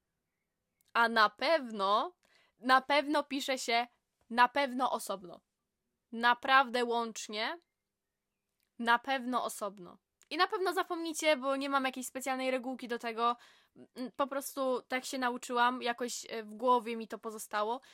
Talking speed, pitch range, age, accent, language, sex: 125 wpm, 230-275 Hz, 10-29, native, Polish, female